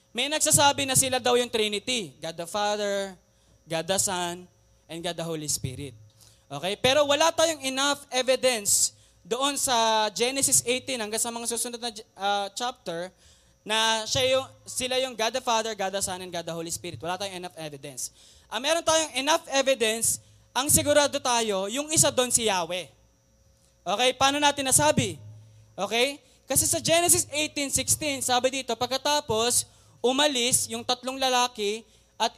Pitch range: 180-265 Hz